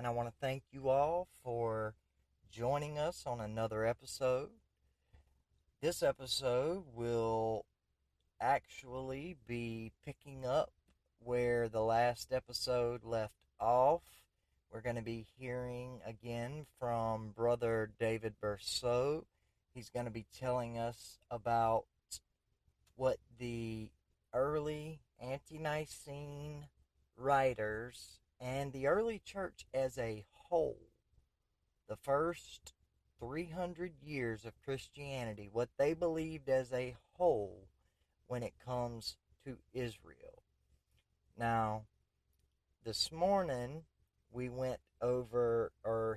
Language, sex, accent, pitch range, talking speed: English, male, American, 110-130 Hz, 105 wpm